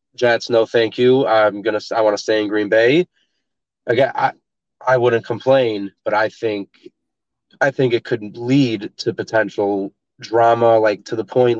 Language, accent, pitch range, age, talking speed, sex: English, American, 100-125 Hz, 30-49, 175 wpm, male